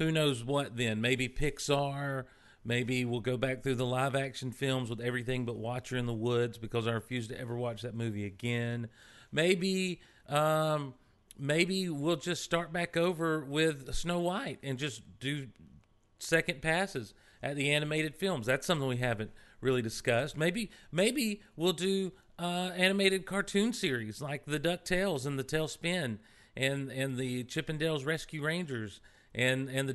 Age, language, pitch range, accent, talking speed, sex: 40-59, English, 120-165 Hz, American, 160 wpm, male